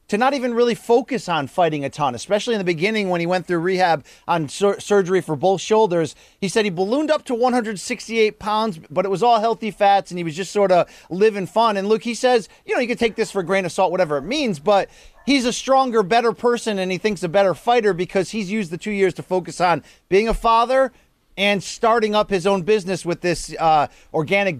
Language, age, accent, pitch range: English, 30-49, American, 180-230 Hz